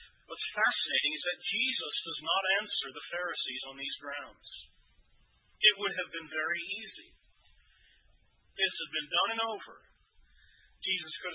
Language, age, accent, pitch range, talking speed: English, 40-59, American, 155-230 Hz, 145 wpm